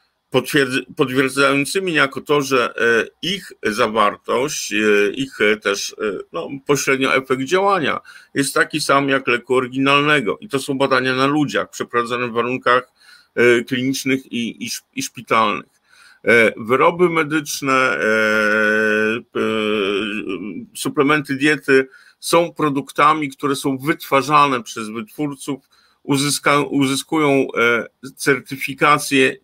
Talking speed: 90 wpm